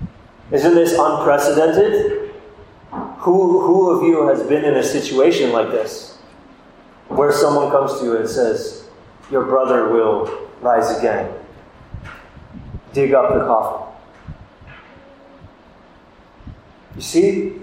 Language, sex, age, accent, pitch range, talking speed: English, male, 30-49, American, 115-185 Hz, 110 wpm